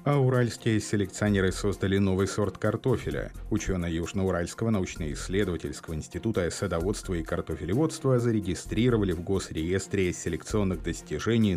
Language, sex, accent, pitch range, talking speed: Russian, male, native, 85-115 Hz, 100 wpm